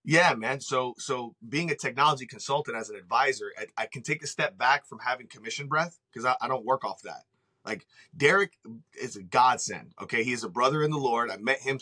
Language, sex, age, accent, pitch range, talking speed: English, male, 30-49, American, 125-150 Hz, 225 wpm